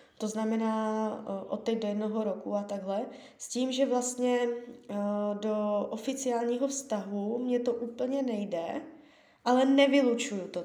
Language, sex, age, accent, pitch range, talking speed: Czech, female, 20-39, native, 205-250 Hz, 130 wpm